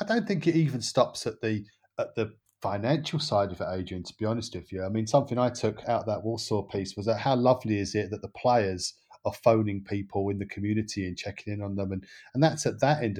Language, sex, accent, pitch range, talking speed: English, male, British, 105-135 Hz, 255 wpm